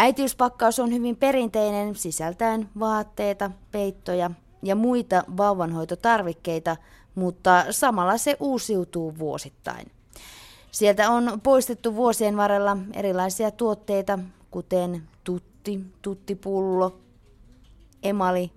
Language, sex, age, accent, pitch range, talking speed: Finnish, female, 20-39, native, 165-220 Hz, 85 wpm